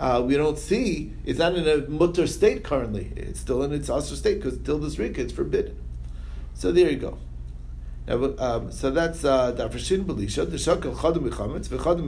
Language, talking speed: English, 205 wpm